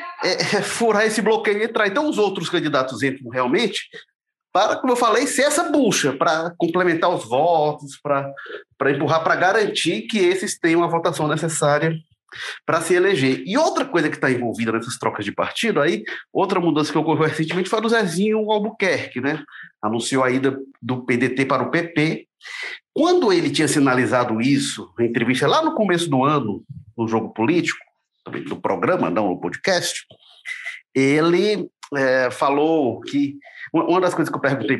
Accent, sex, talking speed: Brazilian, male, 165 wpm